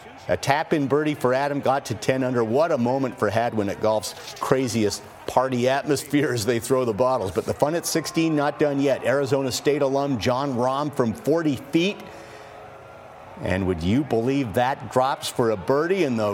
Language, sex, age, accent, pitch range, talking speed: English, male, 50-69, American, 110-145 Hz, 185 wpm